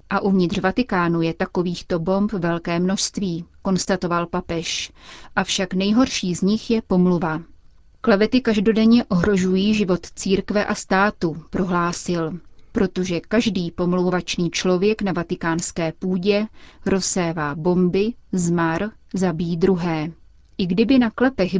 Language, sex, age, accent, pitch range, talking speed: Czech, female, 30-49, native, 175-205 Hz, 110 wpm